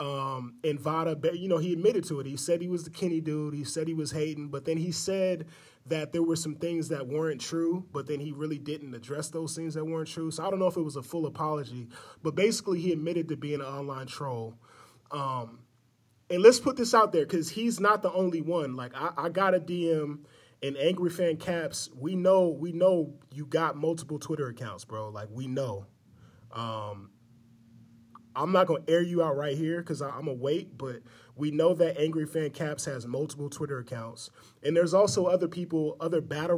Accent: American